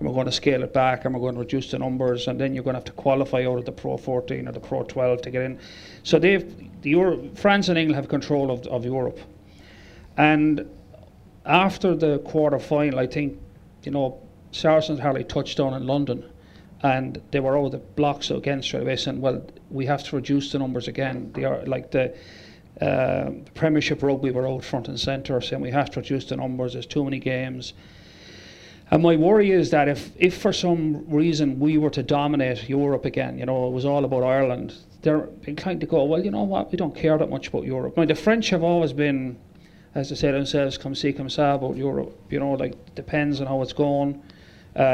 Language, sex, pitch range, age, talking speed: English, male, 130-150 Hz, 40-59, 220 wpm